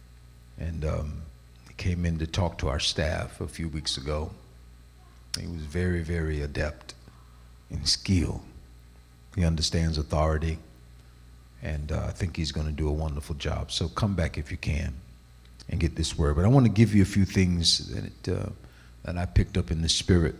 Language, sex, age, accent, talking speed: English, male, 50-69, American, 180 wpm